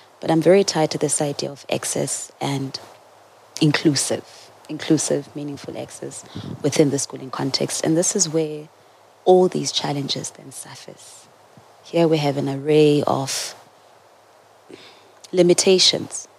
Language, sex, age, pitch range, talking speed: English, female, 20-39, 145-175 Hz, 125 wpm